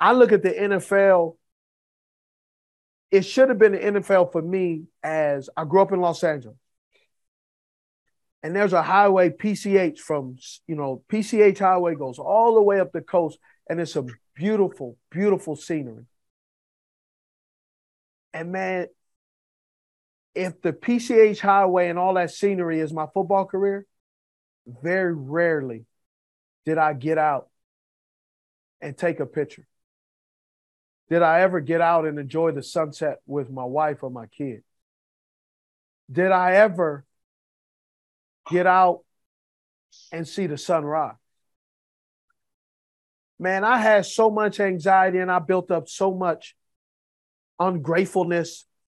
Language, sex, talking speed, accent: English, male, 130 wpm, American